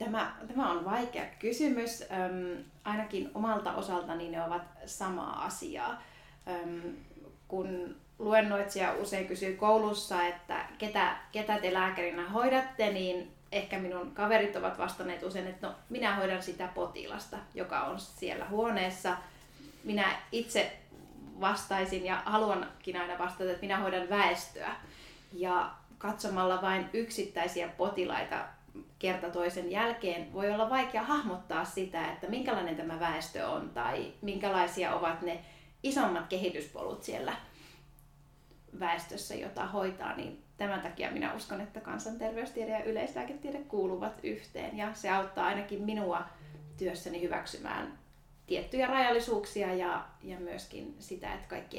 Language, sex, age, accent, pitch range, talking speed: Finnish, female, 30-49, native, 175-215 Hz, 120 wpm